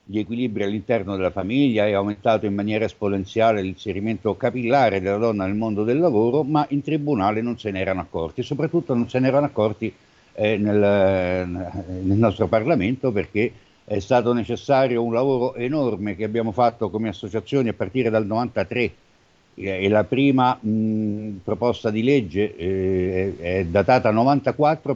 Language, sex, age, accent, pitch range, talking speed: Italian, male, 60-79, native, 100-125 Hz, 160 wpm